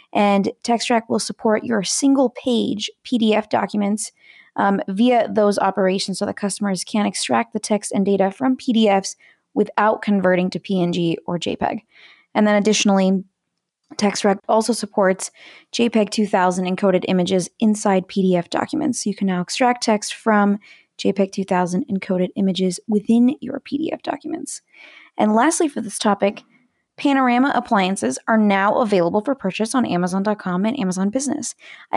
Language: English